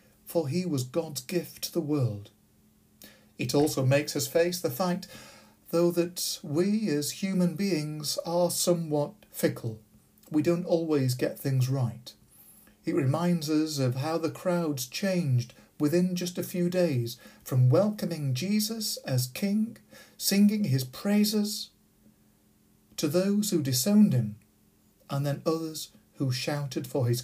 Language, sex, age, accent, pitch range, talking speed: English, male, 50-69, British, 135-190 Hz, 140 wpm